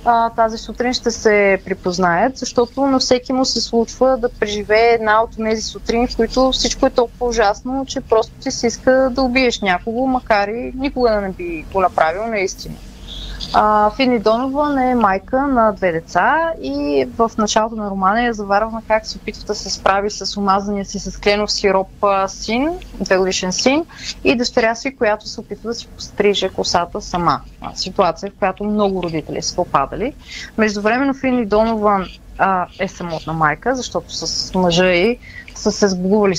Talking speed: 170 wpm